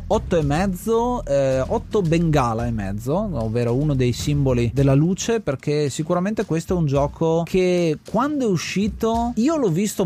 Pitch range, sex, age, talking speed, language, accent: 130-175 Hz, male, 30-49, 160 wpm, Italian, native